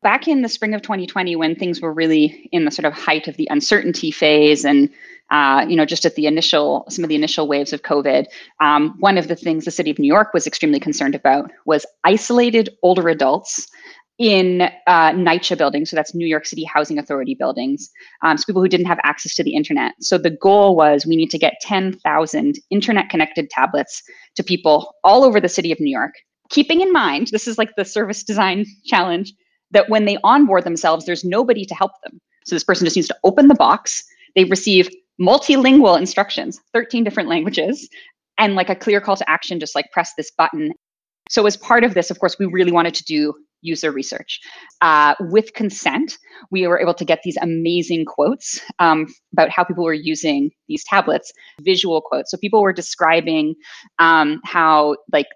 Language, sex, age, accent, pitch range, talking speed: English, female, 20-39, American, 160-220 Hz, 200 wpm